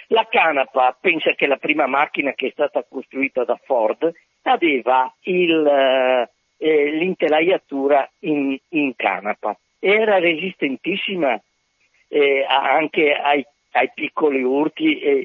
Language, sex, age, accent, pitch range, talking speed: Italian, male, 50-69, native, 135-215 Hz, 115 wpm